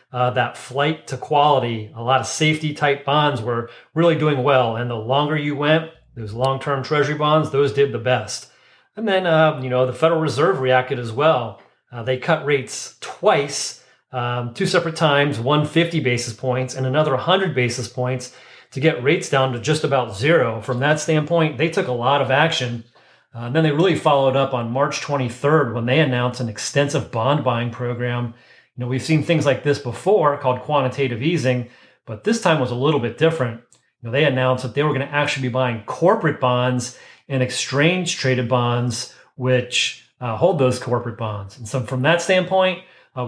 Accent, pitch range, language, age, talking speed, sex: American, 125-155 Hz, English, 40-59, 190 wpm, male